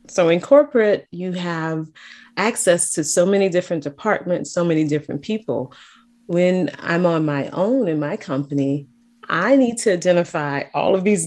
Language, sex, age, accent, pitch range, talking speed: English, female, 30-49, American, 160-210 Hz, 160 wpm